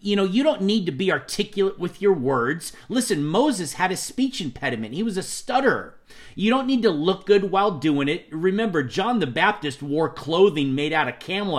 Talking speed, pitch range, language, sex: 205 wpm, 145-195 Hz, English, male